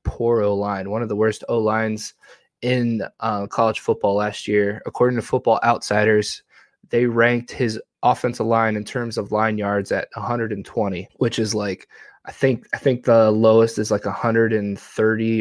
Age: 20-39